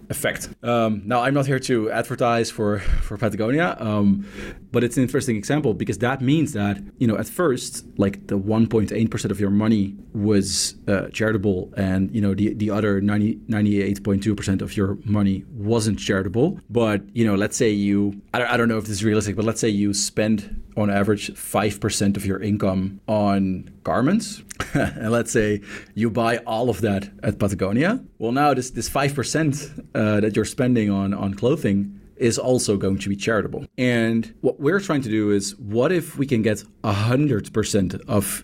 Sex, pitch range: male, 100-120 Hz